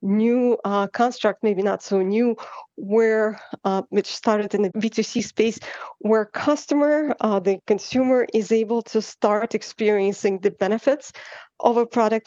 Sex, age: female, 50-69